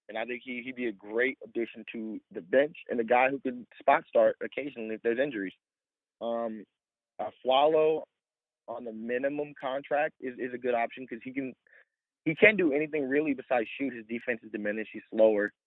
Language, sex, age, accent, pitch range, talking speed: English, male, 20-39, American, 110-135 Hz, 200 wpm